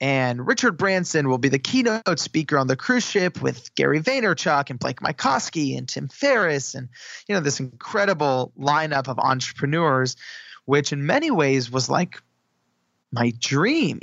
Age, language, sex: 20-39, English, male